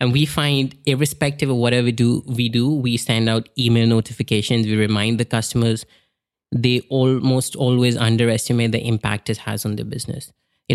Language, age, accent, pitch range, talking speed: English, 20-39, Indian, 110-125 Hz, 170 wpm